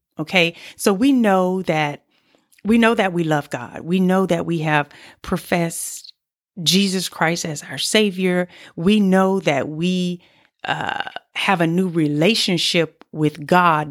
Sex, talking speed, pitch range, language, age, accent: female, 140 wpm, 155-205 Hz, English, 30-49, American